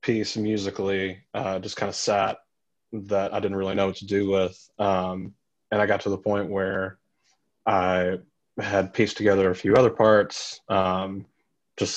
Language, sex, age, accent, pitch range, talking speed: English, male, 20-39, American, 90-105 Hz, 170 wpm